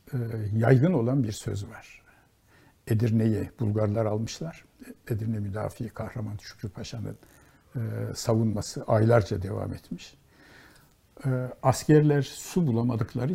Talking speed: 90 wpm